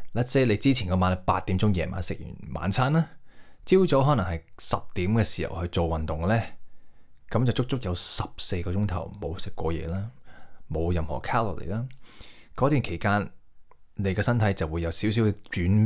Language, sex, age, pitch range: Chinese, male, 20-39, 85-110 Hz